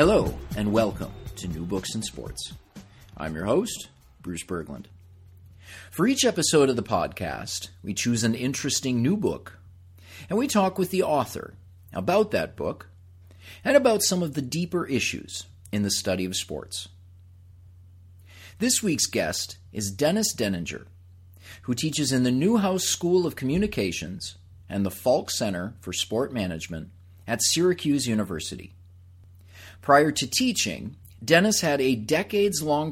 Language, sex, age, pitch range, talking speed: English, male, 40-59, 90-145 Hz, 140 wpm